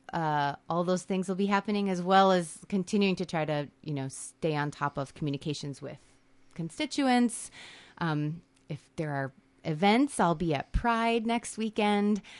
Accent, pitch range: American, 150-200 Hz